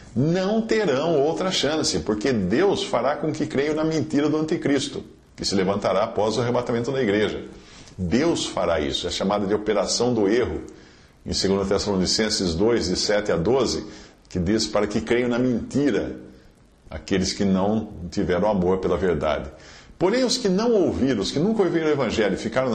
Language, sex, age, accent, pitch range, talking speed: Portuguese, male, 50-69, Brazilian, 95-150 Hz, 175 wpm